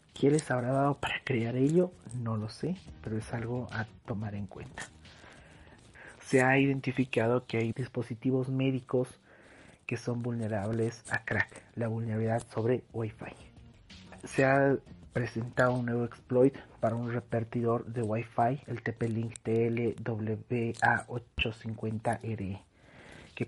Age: 40-59